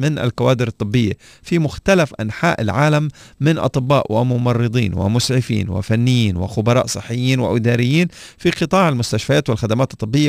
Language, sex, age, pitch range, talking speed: Arabic, male, 40-59, 110-140 Hz, 115 wpm